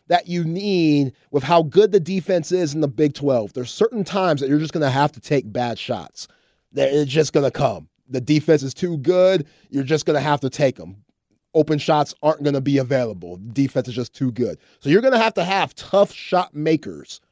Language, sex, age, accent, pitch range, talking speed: English, male, 30-49, American, 145-190 Hz, 230 wpm